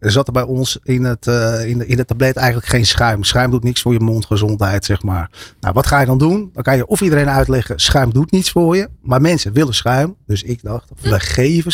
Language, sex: Dutch, male